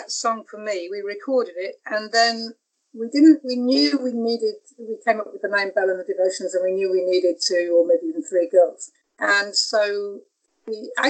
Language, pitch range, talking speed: English, 195-265 Hz, 205 wpm